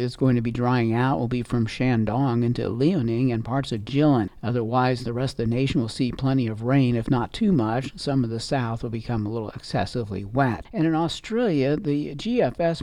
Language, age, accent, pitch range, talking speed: English, 50-69, American, 115-140 Hz, 215 wpm